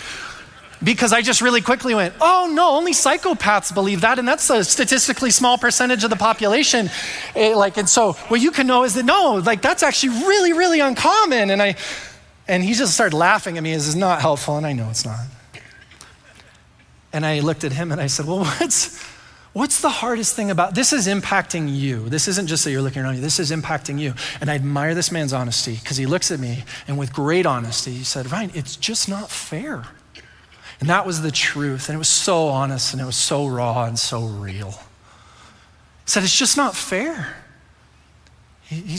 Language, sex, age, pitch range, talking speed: English, male, 30-49, 150-220 Hz, 205 wpm